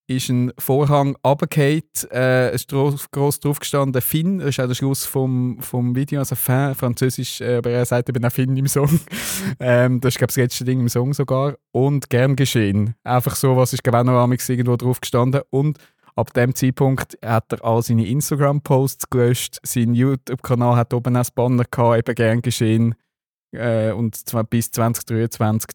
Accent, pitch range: Austrian, 115-135 Hz